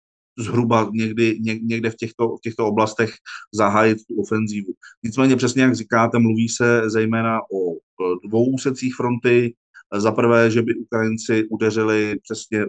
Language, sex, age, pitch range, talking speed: Slovak, male, 30-49, 105-115 Hz, 130 wpm